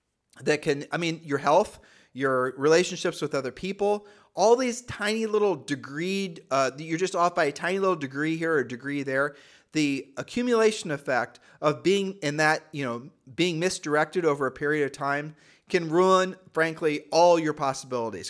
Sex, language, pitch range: male, English, 140-180 Hz